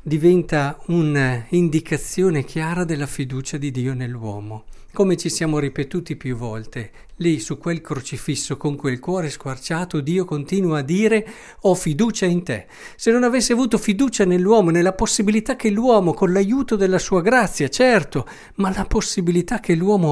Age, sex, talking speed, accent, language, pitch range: 50-69, male, 150 wpm, native, Italian, 145-195 Hz